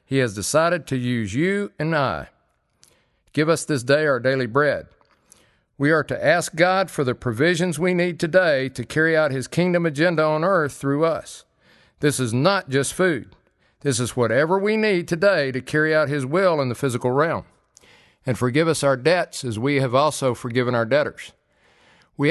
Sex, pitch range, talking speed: male, 125-165 Hz, 185 wpm